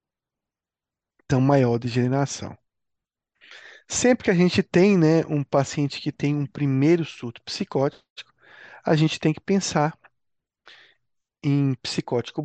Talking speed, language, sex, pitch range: 110 wpm, Portuguese, male, 125-160 Hz